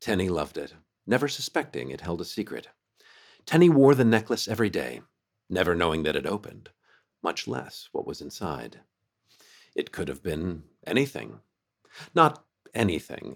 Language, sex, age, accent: English, male, 50-69, American